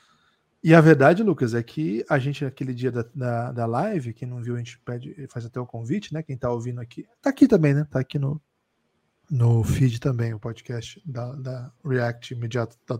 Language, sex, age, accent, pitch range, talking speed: Portuguese, male, 20-39, Brazilian, 130-175 Hz, 210 wpm